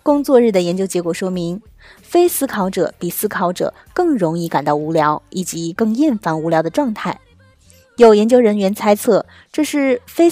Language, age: Chinese, 20-39